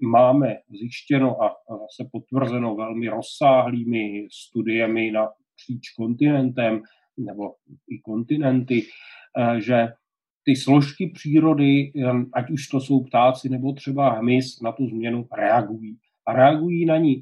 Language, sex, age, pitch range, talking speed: Slovak, male, 40-59, 125-150 Hz, 120 wpm